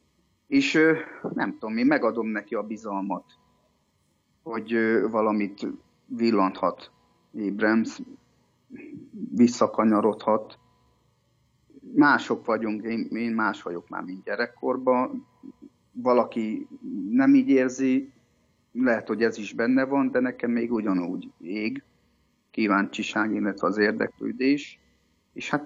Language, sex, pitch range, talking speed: Hungarian, male, 100-150 Hz, 100 wpm